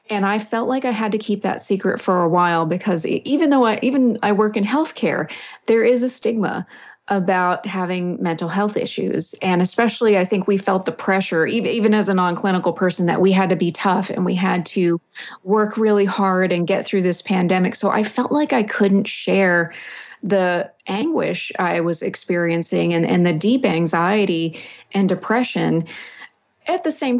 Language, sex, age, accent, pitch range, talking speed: English, female, 30-49, American, 180-215 Hz, 185 wpm